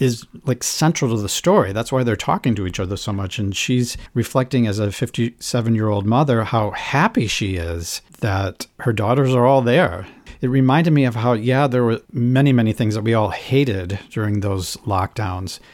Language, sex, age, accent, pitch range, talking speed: English, male, 50-69, American, 100-130 Hz, 190 wpm